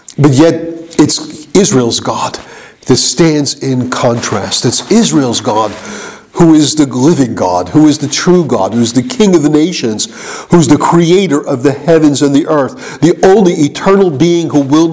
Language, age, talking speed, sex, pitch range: English, 50-69, 180 wpm, male, 125-165 Hz